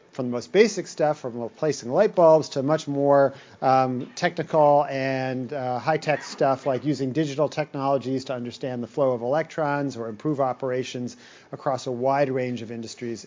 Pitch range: 125-150 Hz